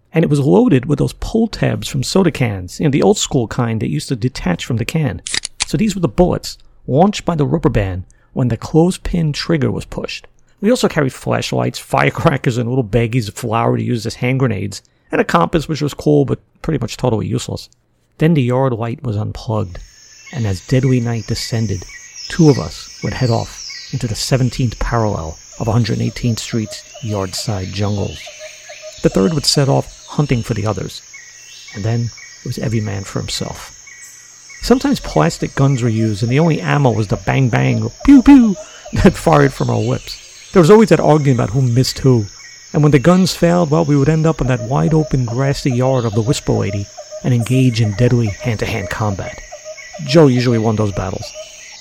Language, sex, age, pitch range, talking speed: English, male, 50-69, 115-160 Hz, 195 wpm